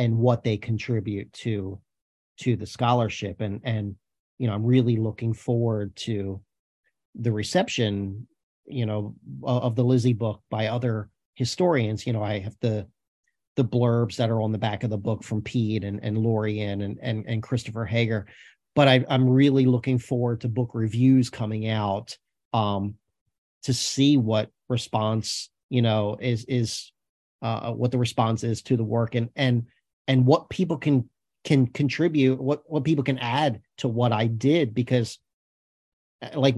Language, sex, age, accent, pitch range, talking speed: English, male, 40-59, American, 110-130 Hz, 165 wpm